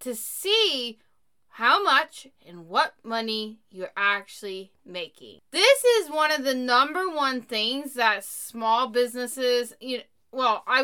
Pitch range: 215-290 Hz